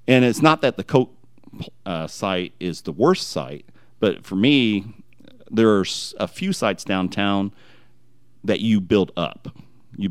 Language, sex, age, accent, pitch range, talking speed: English, male, 40-59, American, 85-105 Hz, 155 wpm